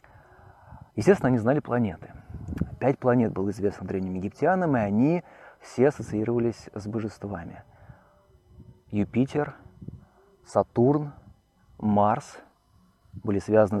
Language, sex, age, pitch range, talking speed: Russian, male, 30-49, 100-125 Hz, 90 wpm